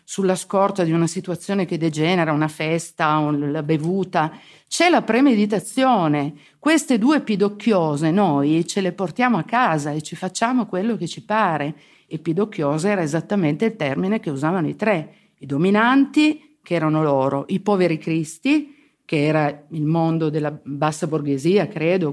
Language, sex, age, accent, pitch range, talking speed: Italian, female, 50-69, native, 150-210 Hz, 150 wpm